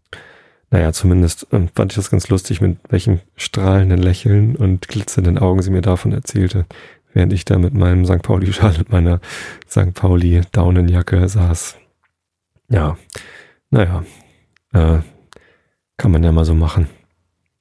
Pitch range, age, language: 90-105 Hz, 30-49, German